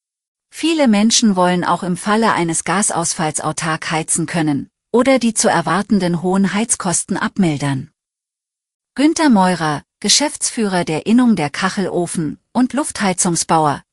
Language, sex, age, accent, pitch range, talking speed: German, female, 40-59, German, 170-215 Hz, 115 wpm